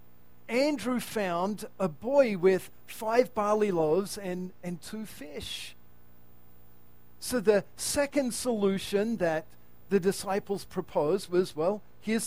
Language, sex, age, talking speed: English, male, 50-69, 110 wpm